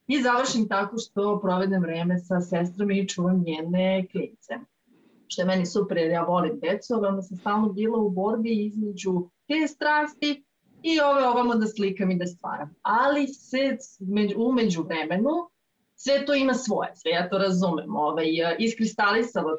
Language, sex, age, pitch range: Croatian, female, 30-49, 185-240 Hz